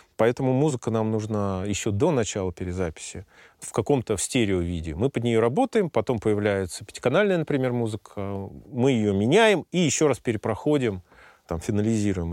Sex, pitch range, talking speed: male, 105-140 Hz, 145 wpm